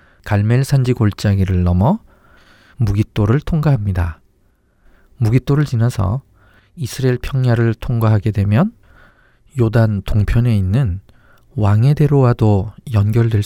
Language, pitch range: Korean, 95-120 Hz